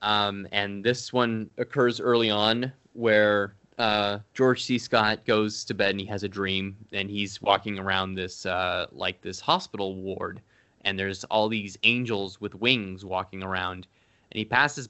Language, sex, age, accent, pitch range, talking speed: English, male, 20-39, American, 95-115 Hz, 170 wpm